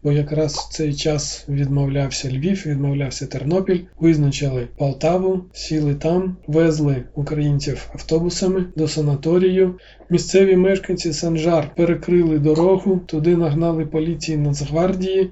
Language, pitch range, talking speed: Ukrainian, 145-170 Hz, 105 wpm